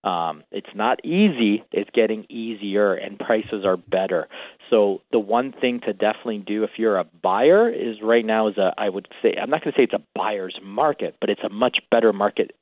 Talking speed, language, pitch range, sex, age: 215 wpm, English, 100-120 Hz, male, 40-59